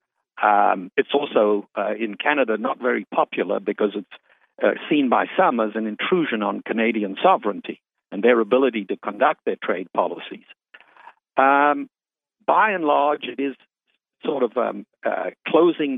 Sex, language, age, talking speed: male, English, 60-79, 150 wpm